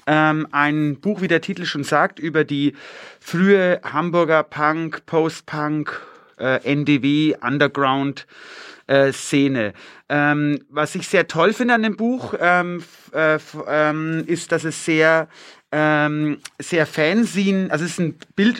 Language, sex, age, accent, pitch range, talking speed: English, male, 30-49, German, 150-180 Hz, 130 wpm